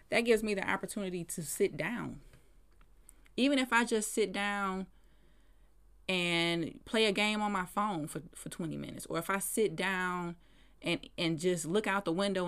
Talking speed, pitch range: 180 wpm, 175-230 Hz